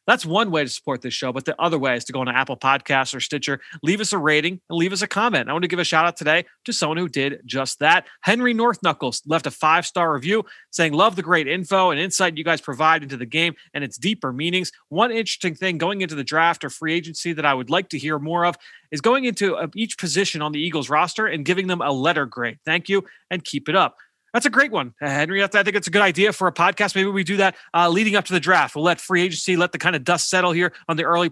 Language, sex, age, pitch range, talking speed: English, male, 30-49, 150-190 Hz, 280 wpm